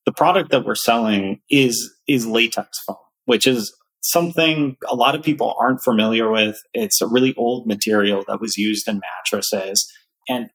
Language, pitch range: English, 105-135 Hz